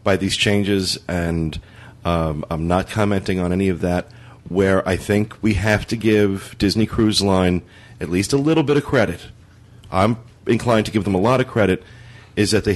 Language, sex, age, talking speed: English, male, 40-59, 195 wpm